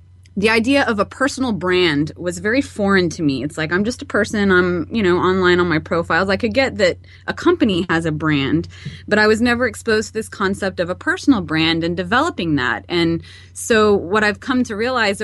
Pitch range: 175-245 Hz